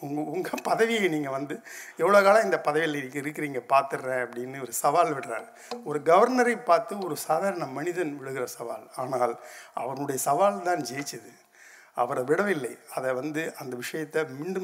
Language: Tamil